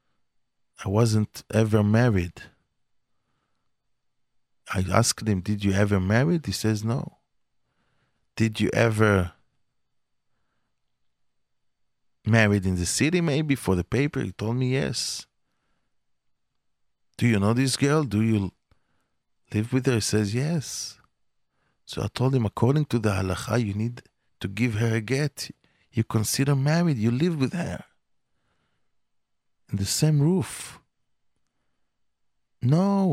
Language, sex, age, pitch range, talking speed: English, male, 50-69, 105-140 Hz, 125 wpm